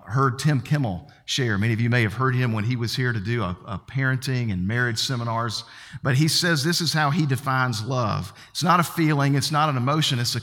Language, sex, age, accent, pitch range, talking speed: English, male, 50-69, American, 110-140 Hz, 240 wpm